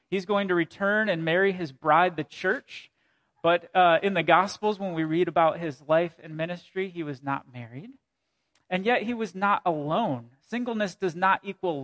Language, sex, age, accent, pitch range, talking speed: English, male, 30-49, American, 155-195 Hz, 190 wpm